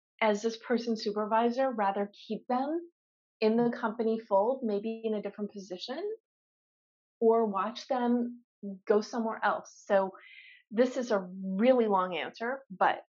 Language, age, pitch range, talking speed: English, 30-49, 205-255 Hz, 135 wpm